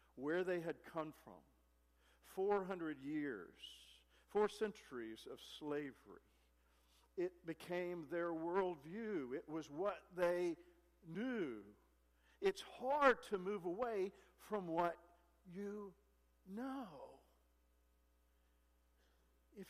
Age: 50-69